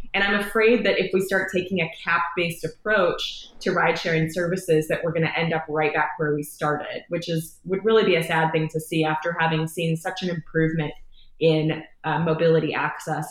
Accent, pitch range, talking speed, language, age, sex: American, 160-210 Hz, 205 wpm, English, 20-39, female